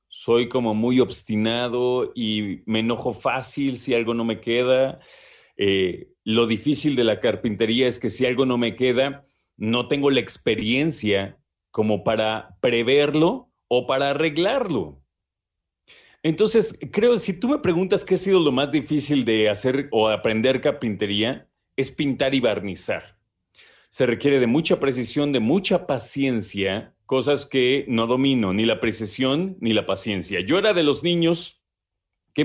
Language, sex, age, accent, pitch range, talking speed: Spanish, male, 40-59, Mexican, 115-155 Hz, 150 wpm